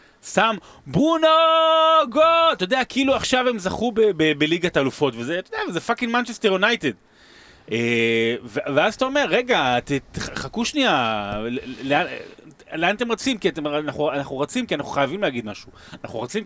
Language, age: Hebrew, 30-49